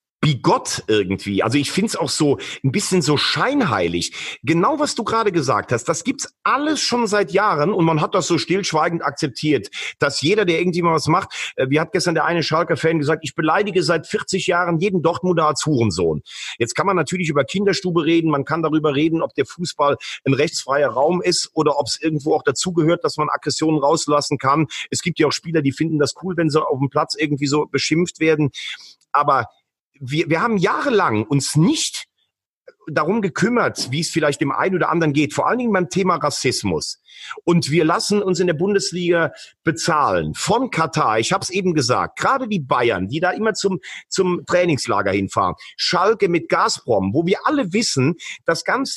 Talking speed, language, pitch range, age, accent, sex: 190 wpm, German, 150-185 Hz, 40-59, German, male